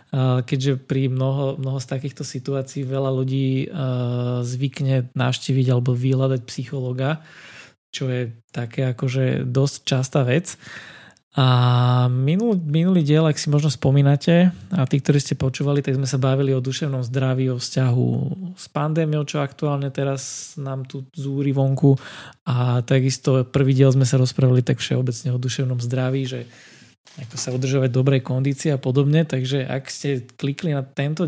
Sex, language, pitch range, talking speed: male, Slovak, 130-145 Hz, 150 wpm